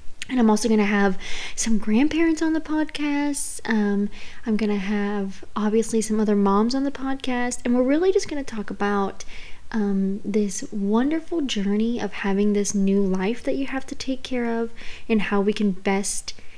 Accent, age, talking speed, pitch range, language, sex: American, 20-39, 190 wpm, 200-250 Hz, English, female